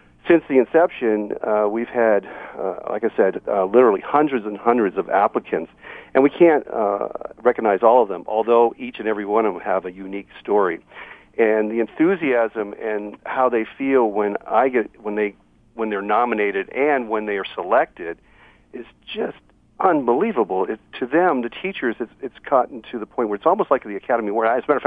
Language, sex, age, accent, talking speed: English, male, 50-69, American, 195 wpm